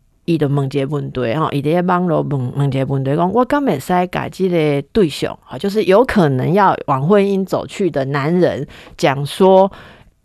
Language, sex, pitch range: Chinese, female, 145-190 Hz